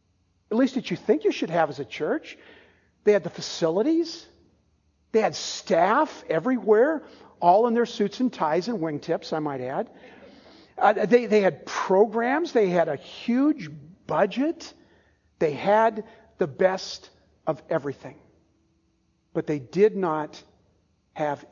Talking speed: 140 wpm